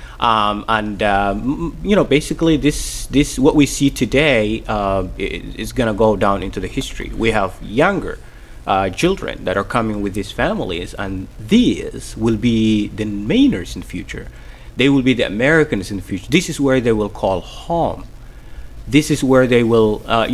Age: 30-49